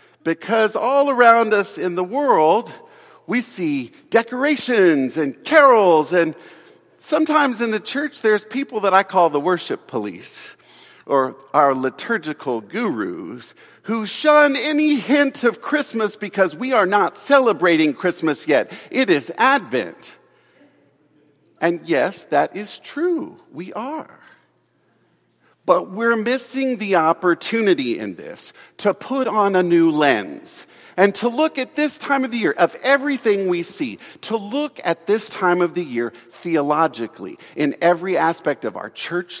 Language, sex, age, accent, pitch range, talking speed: English, male, 50-69, American, 165-260 Hz, 140 wpm